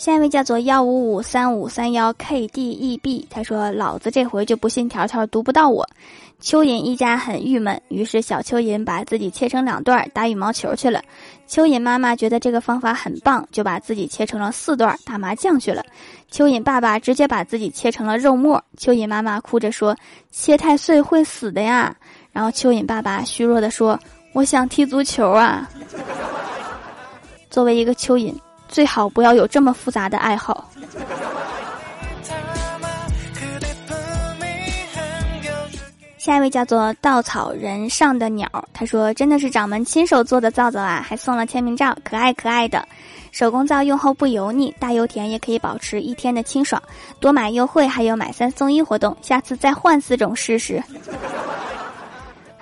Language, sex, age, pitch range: Chinese, female, 10-29, 220-265 Hz